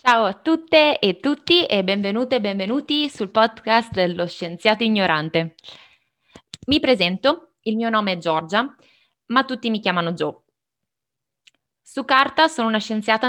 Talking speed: 140 wpm